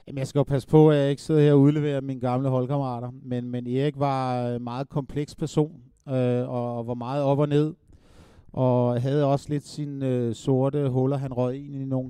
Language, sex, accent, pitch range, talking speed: Danish, male, native, 125-145 Hz, 215 wpm